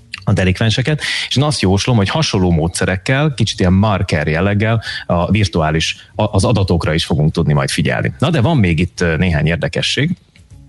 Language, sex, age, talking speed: Hungarian, male, 30-49, 165 wpm